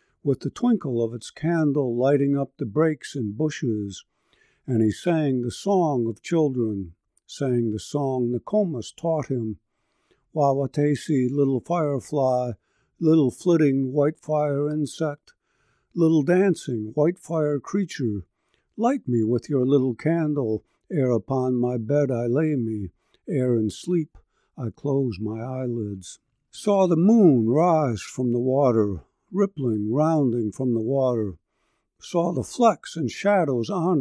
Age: 60-79